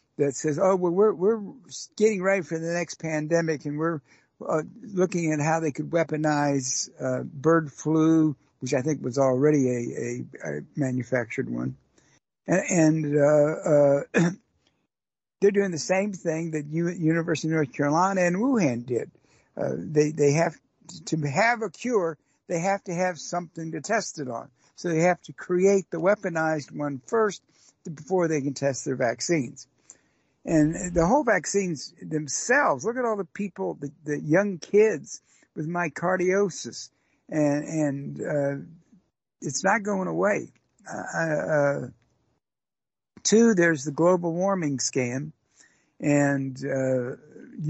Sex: male